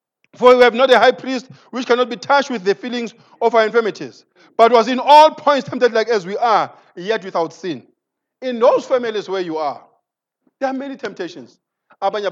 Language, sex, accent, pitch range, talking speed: English, male, Nigerian, 220-315 Hz, 180 wpm